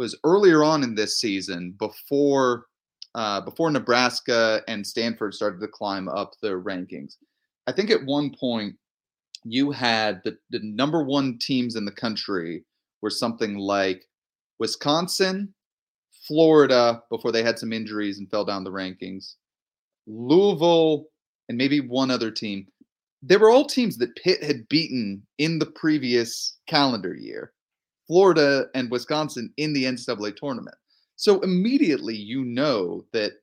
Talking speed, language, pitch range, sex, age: 140 wpm, English, 105-145 Hz, male, 30-49